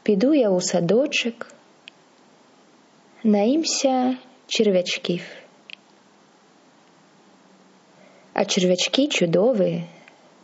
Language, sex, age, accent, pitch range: Russian, female, 20-39, native, 180-230 Hz